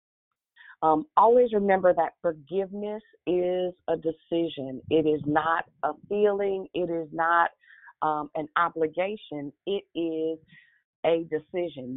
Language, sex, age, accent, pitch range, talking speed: English, female, 40-59, American, 150-180 Hz, 115 wpm